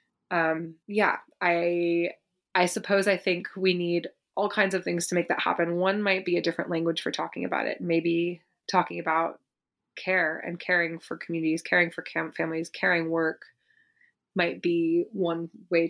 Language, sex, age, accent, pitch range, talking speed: English, female, 20-39, American, 170-200 Hz, 170 wpm